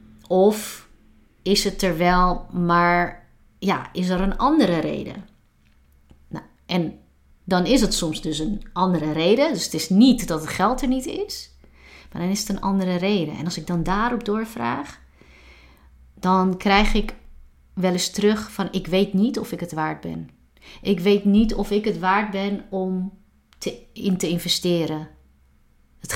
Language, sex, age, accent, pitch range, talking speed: Dutch, female, 30-49, Dutch, 165-200 Hz, 165 wpm